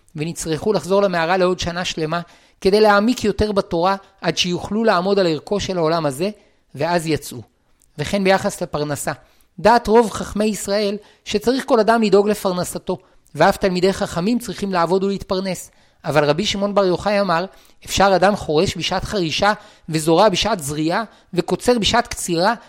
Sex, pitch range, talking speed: male, 170-210 Hz, 145 wpm